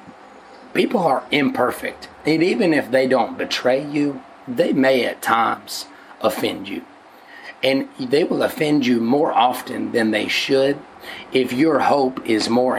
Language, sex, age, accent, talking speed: English, male, 30-49, American, 145 wpm